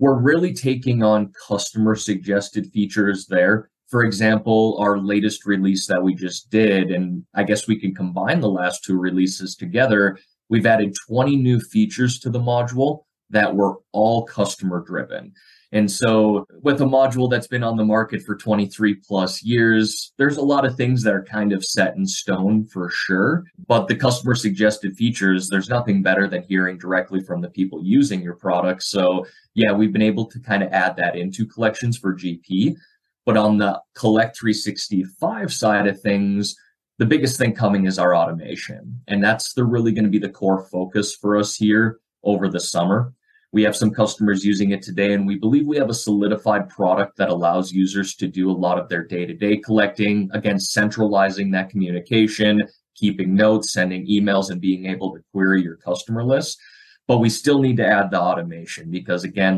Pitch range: 95-110 Hz